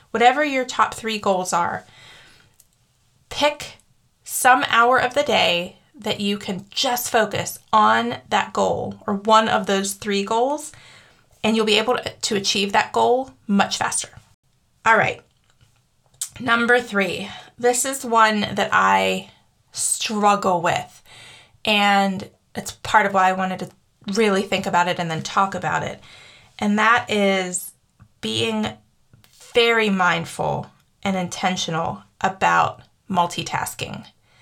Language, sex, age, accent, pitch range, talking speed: English, female, 20-39, American, 175-220 Hz, 130 wpm